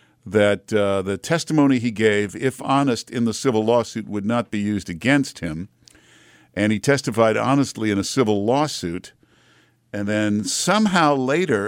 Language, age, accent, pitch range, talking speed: English, 50-69, American, 100-130 Hz, 155 wpm